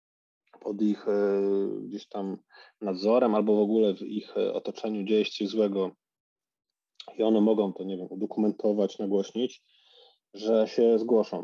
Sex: male